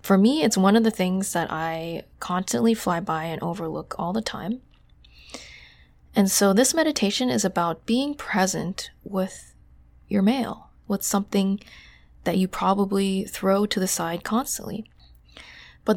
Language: English